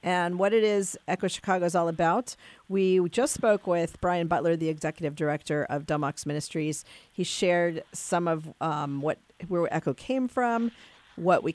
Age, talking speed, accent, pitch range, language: 50-69, 170 wpm, American, 160-200 Hz, English